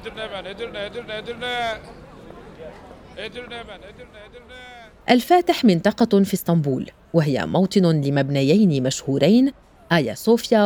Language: Arabic